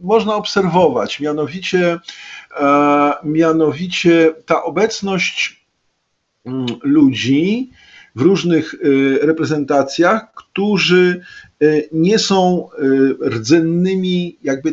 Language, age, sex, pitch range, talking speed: Polish, 50-69, male, 130-170 Hz, 60 wpm